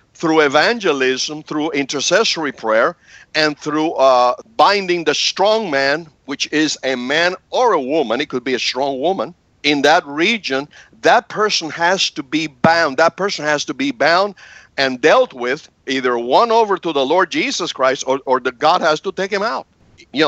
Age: 60-79